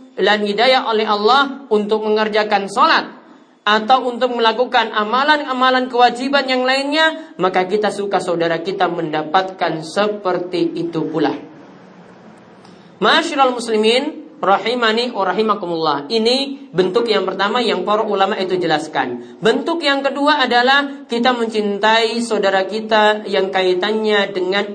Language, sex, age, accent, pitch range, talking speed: Indonesian, male, 40-59, native, 185-235 Hz, 105 wpm